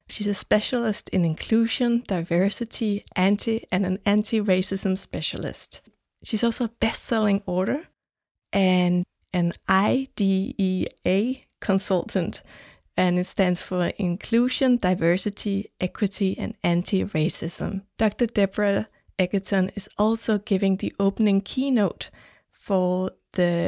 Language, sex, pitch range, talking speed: Danish, female, 180-210 Hz, 100 wpm